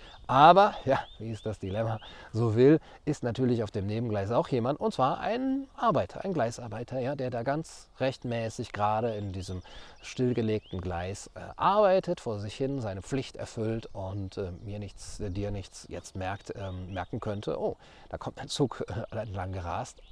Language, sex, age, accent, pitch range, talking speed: German, male, 40-59, German, 100-125 Hz, 175 wpm